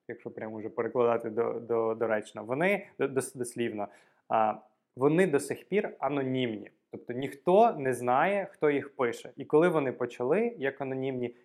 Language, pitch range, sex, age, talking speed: Ukrainian, 115-145 Hz, male, 20-39, 160 wpm